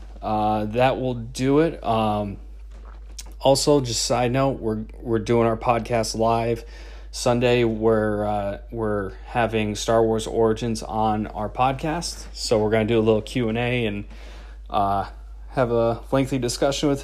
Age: 30-49